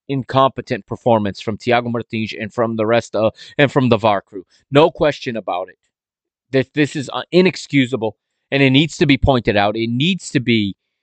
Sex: male